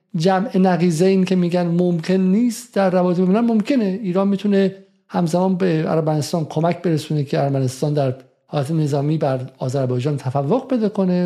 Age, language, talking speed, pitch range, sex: 50-69, Persian, 145 wpm, 140-190 Hz, male